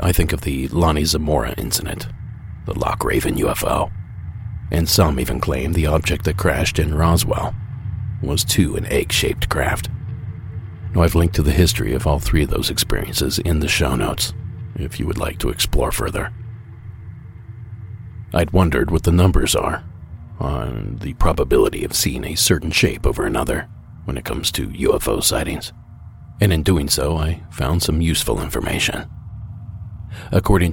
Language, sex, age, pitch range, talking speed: English, male, 40-59, 80-105 Hz, 160 wpm